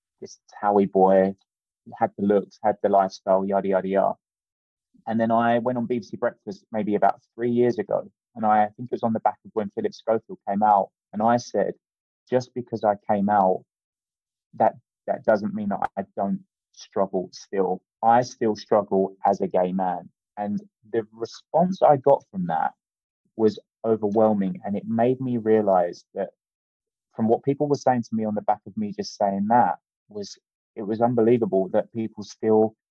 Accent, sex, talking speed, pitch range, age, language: British, male, 180 wpm, 100-120 Hz, 20-39, English